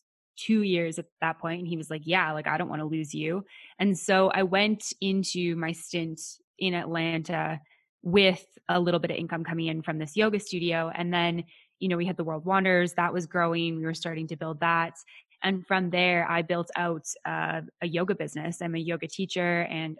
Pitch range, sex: 165-190 Hz, female